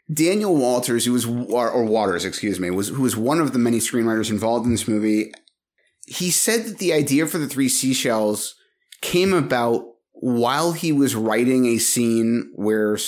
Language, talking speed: English, 175 wpm